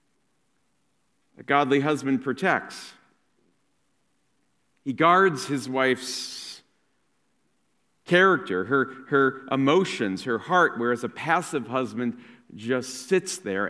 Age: 50-69